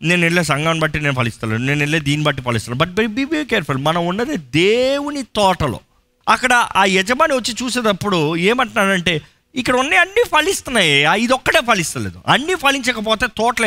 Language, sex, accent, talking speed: Telugu, male, native, 140 wpm